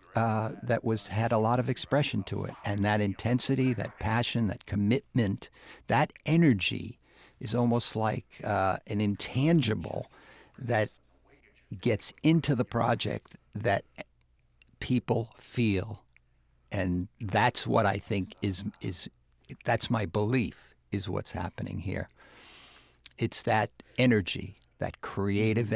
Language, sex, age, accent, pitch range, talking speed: English, male, 60-79, American, 100-125 Hz, 125 wpm